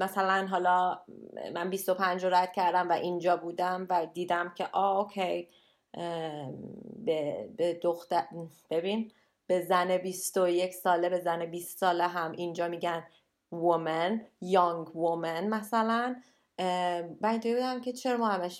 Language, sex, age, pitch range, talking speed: Persian, female, 20-39, 175-215 Hz, 125 wpm